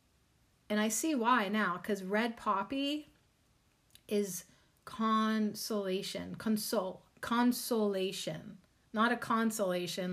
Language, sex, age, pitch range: English, female, 30-49, 190-230 Hz